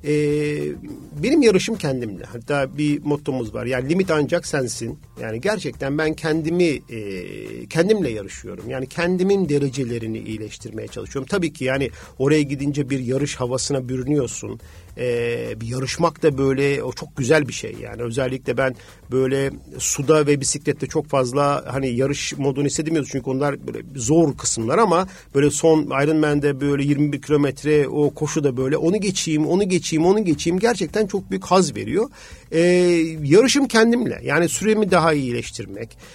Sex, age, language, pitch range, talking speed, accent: male, 50-69, Turkish, 135-165 Hz, 155 wpm, native